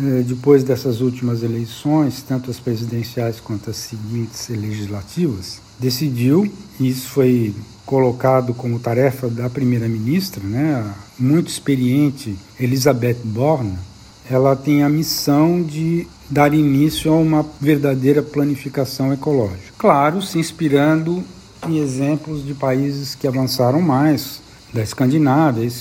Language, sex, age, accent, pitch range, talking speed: Portuguese, male, 60-79, Brazilian, 120-150 Hz, 115 wpm